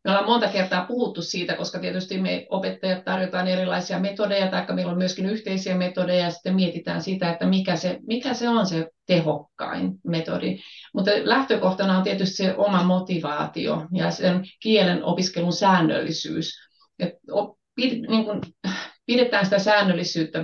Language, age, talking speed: Finnish, 30-49, 140 wpm